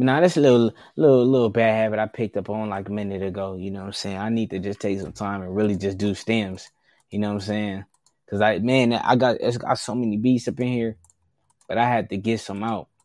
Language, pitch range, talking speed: English, 95-115 Hz, 265 wpm